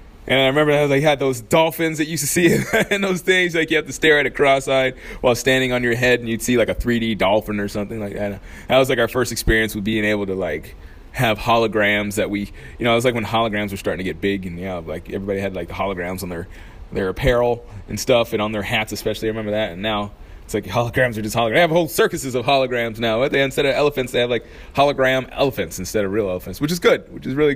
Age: 20-39